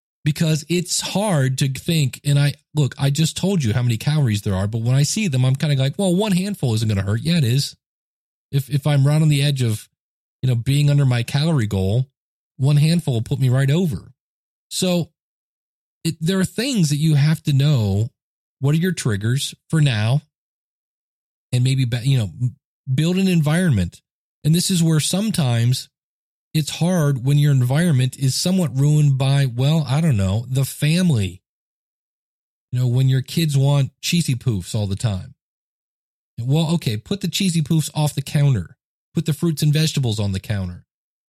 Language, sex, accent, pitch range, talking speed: English, male, American, 130-160 Hz, 190 wpm